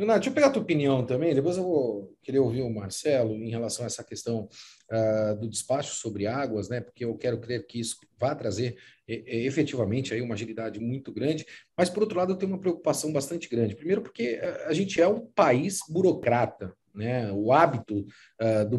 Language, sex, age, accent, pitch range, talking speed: Portuguese, male, 40-59, Brazilian, 125-175 Hz, 210 wpm